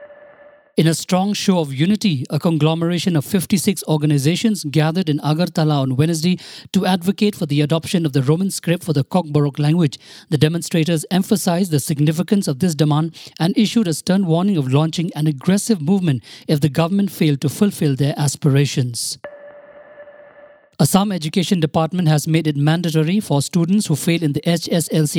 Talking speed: 165 wpm